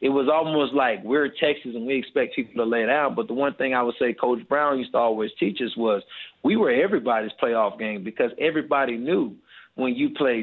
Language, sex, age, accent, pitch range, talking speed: English, male, 20-39, American, 125-145 Hz, 230 wpm